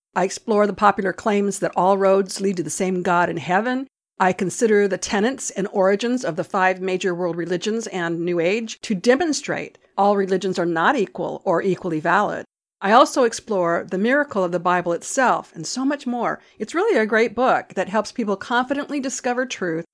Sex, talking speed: female, 195 wpm